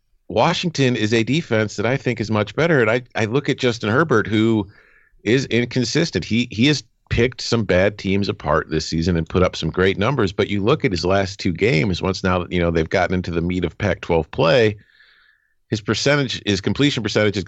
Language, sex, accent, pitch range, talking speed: English, male, American, 90-115 Hz, 215 wpm